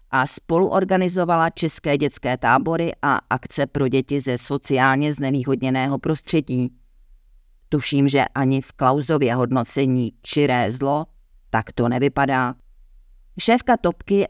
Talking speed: 110 wpm